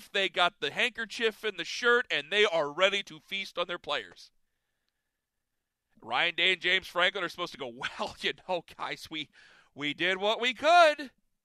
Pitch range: 185-260 Hz